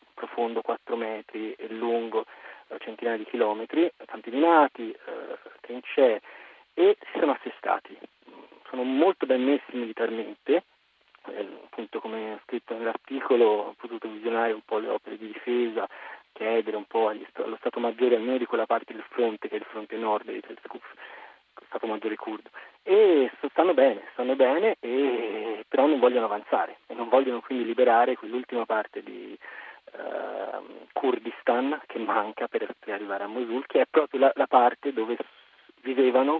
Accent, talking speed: native, 150 wpm